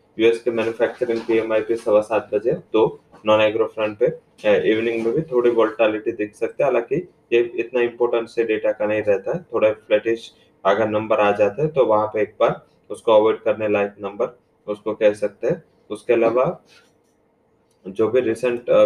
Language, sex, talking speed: English, male, 160 wpm